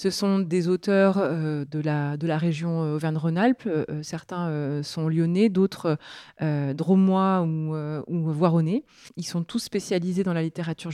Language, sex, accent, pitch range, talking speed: French, female, French, 170-215 Hz, 170 wpm